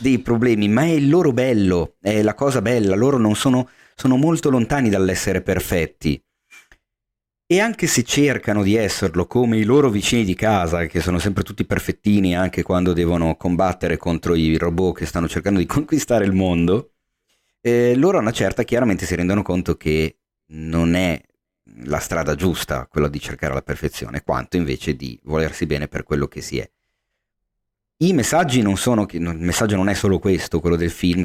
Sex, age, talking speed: male, 40-59, 180 wpm